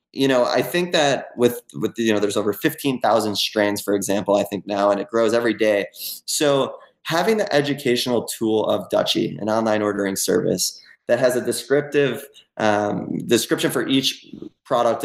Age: 20-39